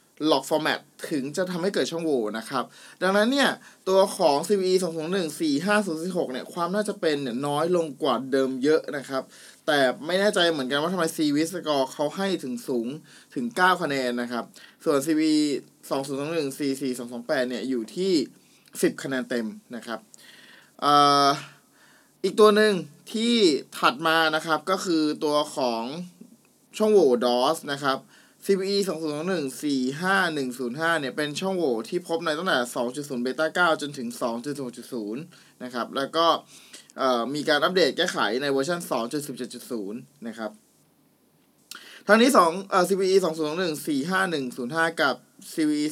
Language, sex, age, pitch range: Thai, male, 20-39, 130-185 Hz